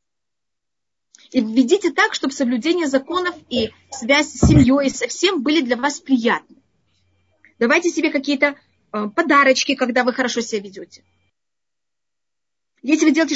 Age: 30-49